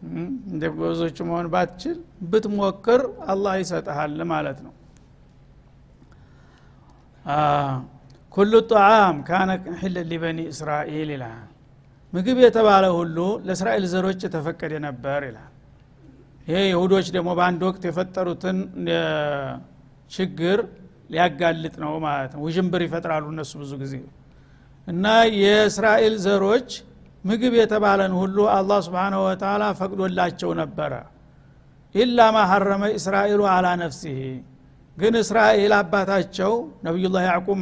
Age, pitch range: 60-79, 155-205 Hz